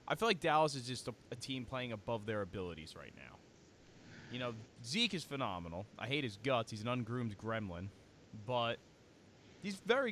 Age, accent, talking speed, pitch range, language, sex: 20-39, American, 185 wpm, 105-150 Hz, English, male